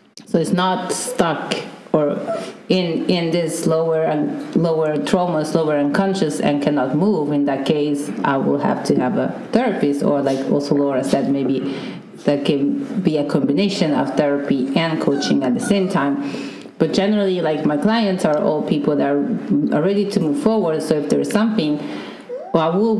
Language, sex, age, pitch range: English, female, 30-49, 155-205 Hz